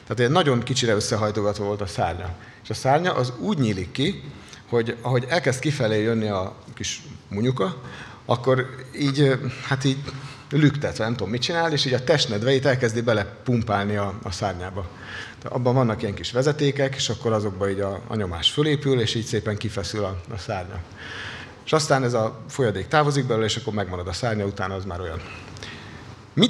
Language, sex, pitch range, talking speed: Hungarian, male, 105-130 Hz, 175 wpm